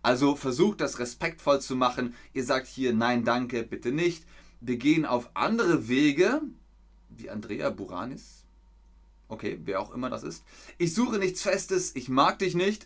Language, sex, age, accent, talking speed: German, male, 30-49, German, 165 wpm